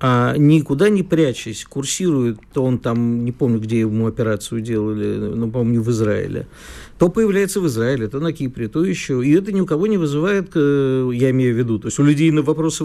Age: 50-69